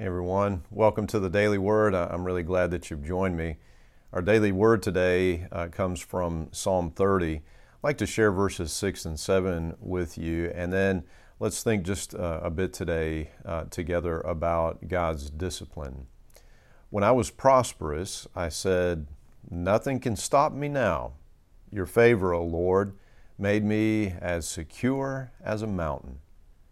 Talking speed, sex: 155 wpm, male